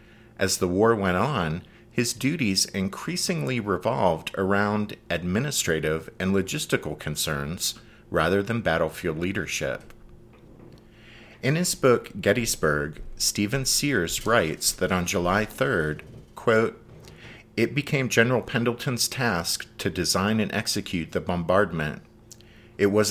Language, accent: English, American